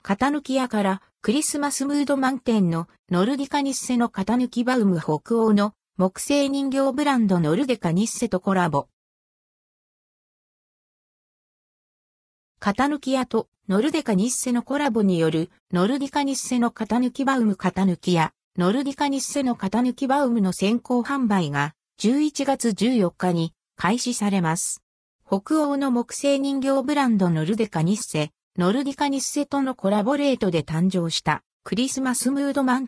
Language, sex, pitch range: Japanese, female, 185-270 Hz